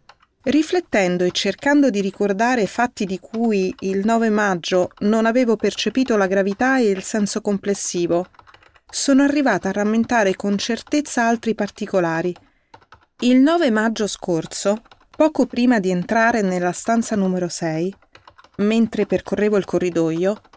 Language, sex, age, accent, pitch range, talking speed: Italian, female, 30-49, native, 190-240 Hz, 130 wpm